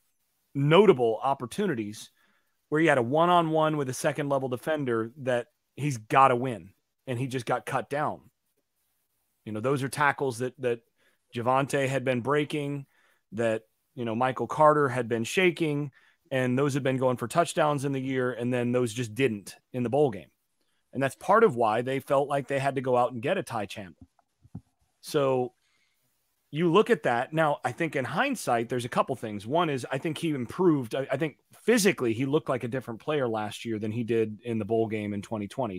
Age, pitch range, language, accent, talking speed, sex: 30-49, 115-145 Hz, English, American, 200 wpm, male